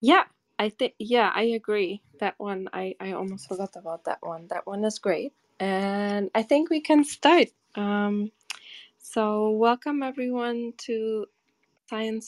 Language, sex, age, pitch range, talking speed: English, female, 20-39, 190-225 Hz, 150 wpm